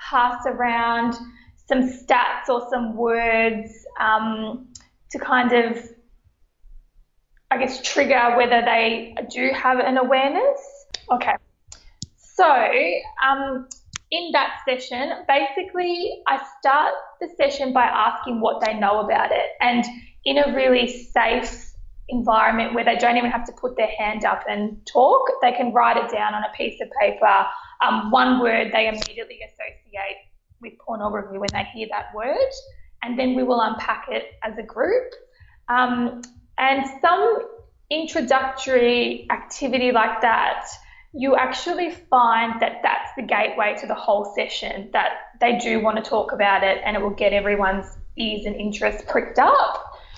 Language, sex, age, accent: English, female, 20-39, Australian